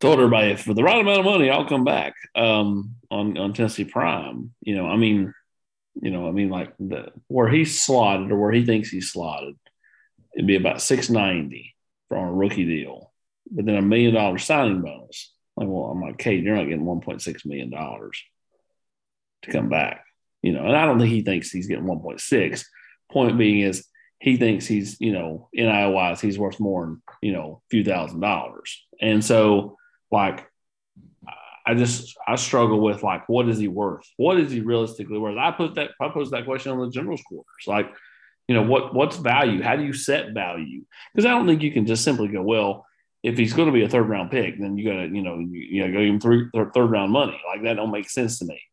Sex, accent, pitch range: male, American, 100-125 Hz